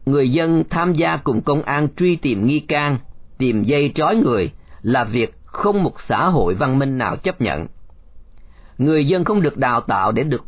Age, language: 40-59, Vietnamese